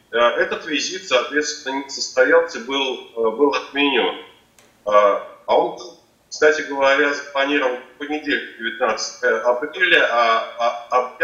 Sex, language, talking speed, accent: male, Russian, 80 wpm, native